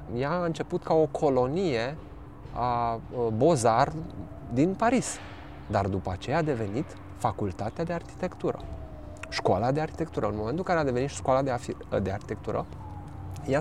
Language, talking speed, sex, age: Romanian, 140 wpm, male, 20-39